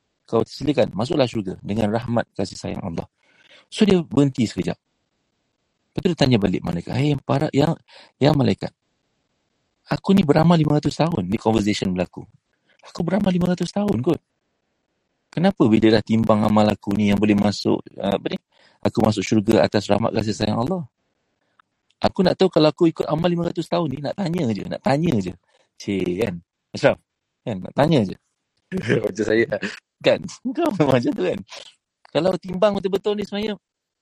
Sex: male